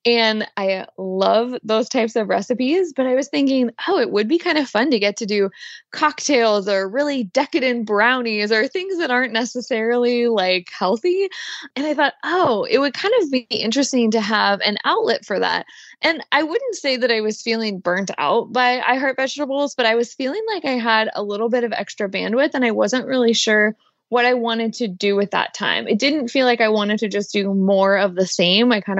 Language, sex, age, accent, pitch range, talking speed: English, female, 20-39, American, 210-270 Hz, 215 wpm